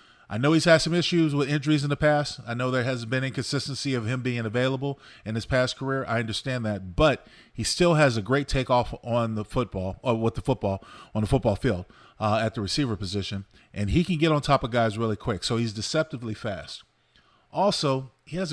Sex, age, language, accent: male, 30-49, English, American